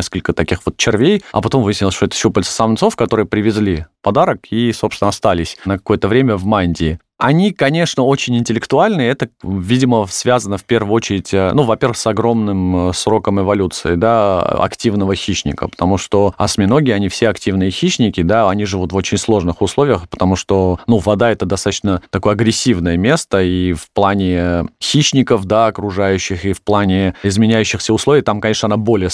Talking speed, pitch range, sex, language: 165 wpm, 95-115 Hz, male, Russian